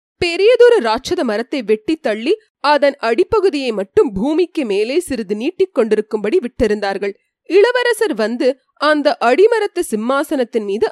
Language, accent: Tamil, native